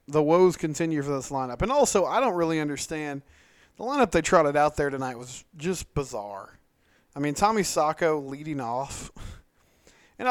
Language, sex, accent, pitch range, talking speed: English, male, American, 140-180 Hz, 170 wpm